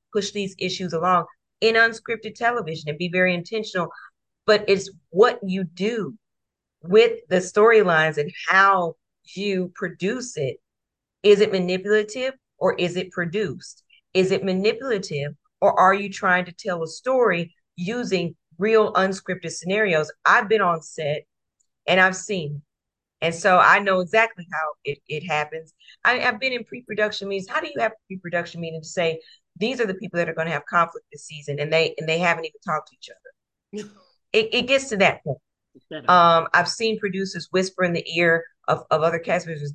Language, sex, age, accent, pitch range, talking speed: English, female, 40-59, American, 160-200 Hz, 180 wpm